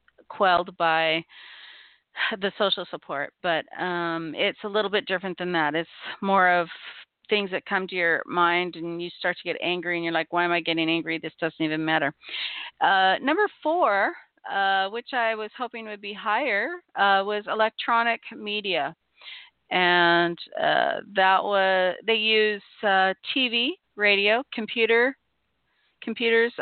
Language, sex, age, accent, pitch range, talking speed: English, female, 40-59, American, 175-215 Hz, 150 wpm